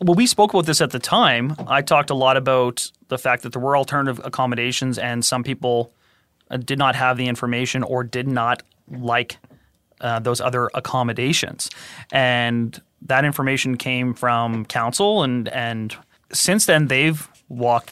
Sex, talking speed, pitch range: male, 160 wpm, 120-145 Hz